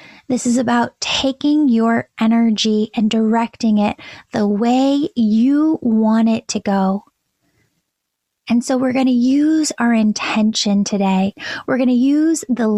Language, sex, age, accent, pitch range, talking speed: English, female, 10-29, American, 225-255 Hz, 140 wpm